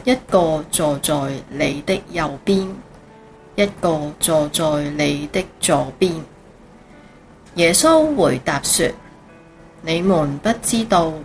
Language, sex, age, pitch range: Chinese, female, 30-49, 150-200 Hz